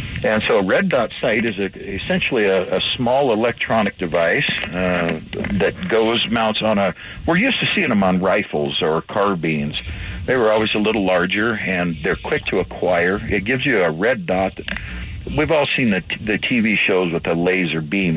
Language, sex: English, male